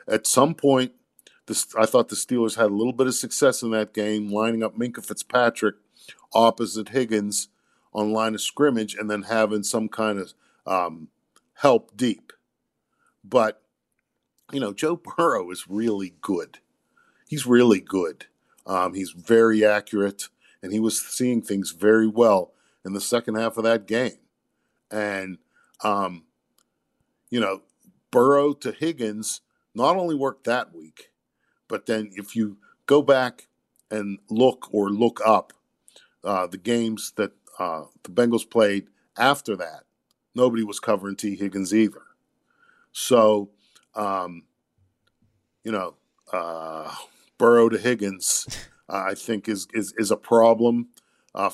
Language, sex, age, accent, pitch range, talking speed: English, male, 50-69, American, 100-115 Hz, 140 wpm